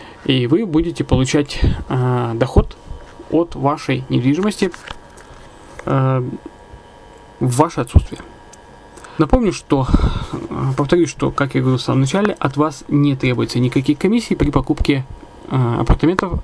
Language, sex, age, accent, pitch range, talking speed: Russian, male, 20-39, native, 125-155 Hz, 120 wpm